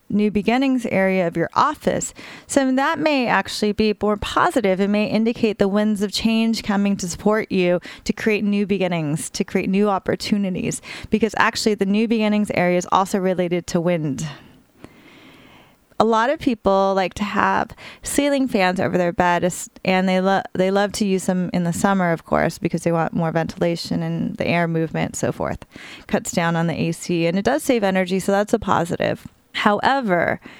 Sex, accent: female, American